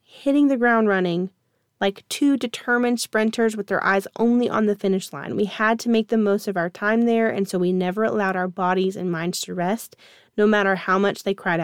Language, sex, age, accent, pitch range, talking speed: English, female, 30-49, American, 185-225 Hz, 220 wpm